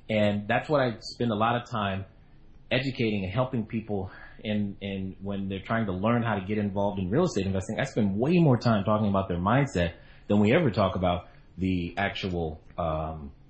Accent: American